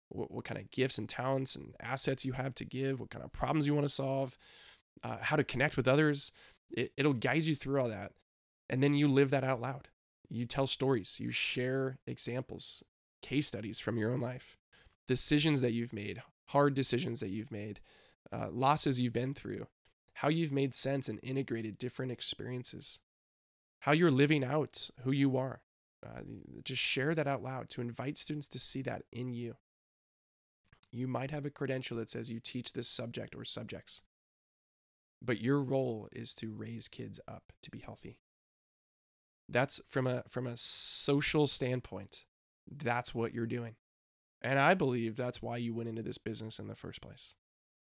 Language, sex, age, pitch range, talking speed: English, male, 20-39, 110-135 Hz, 180 wpm